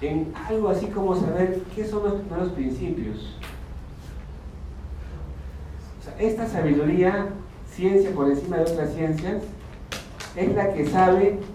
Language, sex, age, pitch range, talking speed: Spanish, male, 50-69, 125-185 Hz, 125 wpm